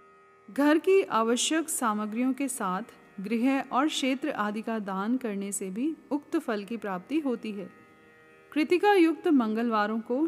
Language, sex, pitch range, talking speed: Hindi, female, 215-285 Hz, 145 wpm